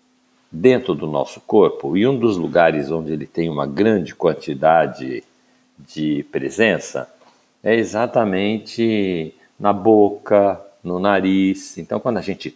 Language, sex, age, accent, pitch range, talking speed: Portuguese, male, 60-79, Brazilian, 95-125 Hz, 125 wpm